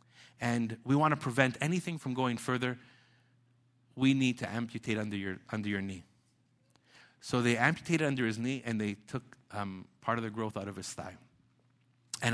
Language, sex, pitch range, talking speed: English, male, 120-160 Hz, 180 wpm